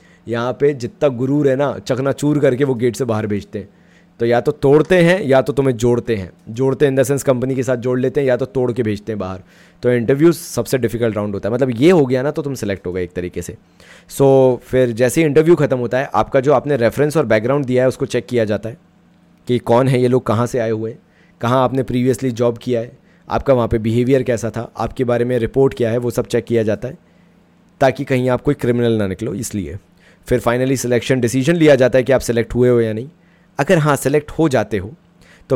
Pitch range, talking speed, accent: 120-140 Hz, 245 wpm, native